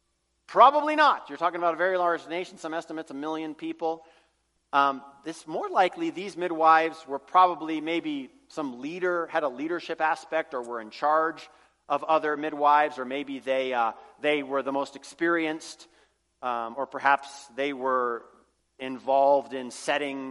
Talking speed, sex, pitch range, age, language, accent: 155 wpm, male, 150-250 Hz, 40-59, English, American